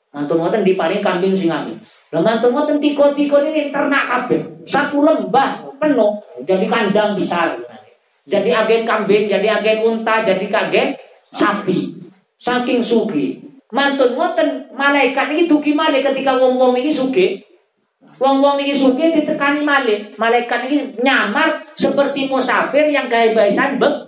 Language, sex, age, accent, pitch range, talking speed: Indonesian, male, 40-59, native, 205-275 Hz, 120 wpm